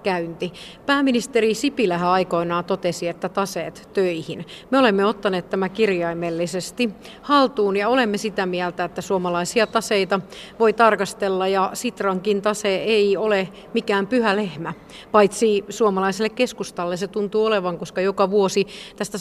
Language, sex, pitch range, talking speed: Finnish, female, 190-225 Hz, 125 wpm